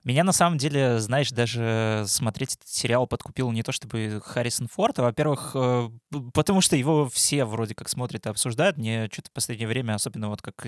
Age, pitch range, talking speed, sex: 20-39, 115-145 Hz, 185 wpm, male